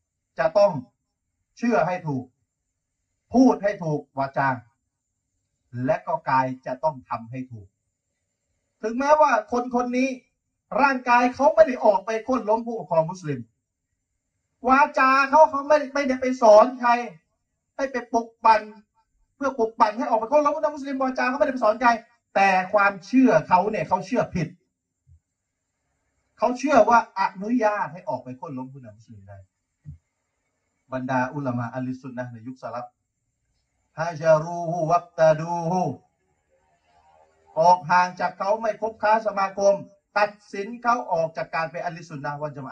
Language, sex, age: Thai, male, 30-49